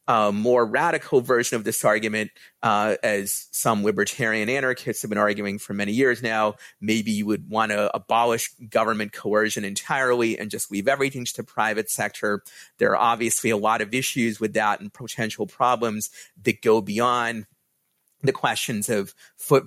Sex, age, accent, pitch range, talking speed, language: male, 30-49, American, 105-115 Hz, 170 wpm, English